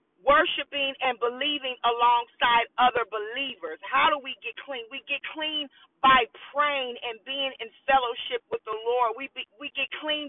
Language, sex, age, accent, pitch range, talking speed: English, female, 40-59, American, 245-300 Hz, 165 wpm